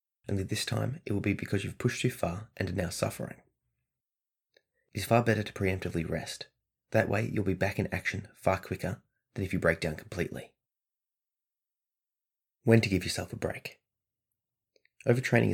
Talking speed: 170 wpm